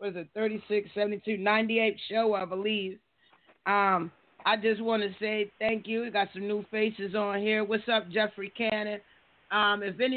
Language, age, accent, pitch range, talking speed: English, 40-59, American, 205-230 Hz, 165 wpm